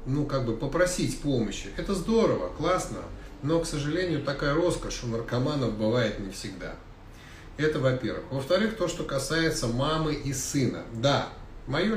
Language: Russian